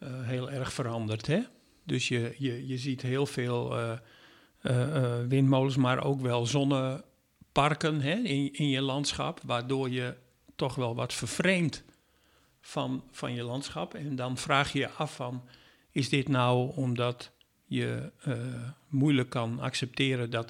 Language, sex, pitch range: Dutch, male, 125-150 Hz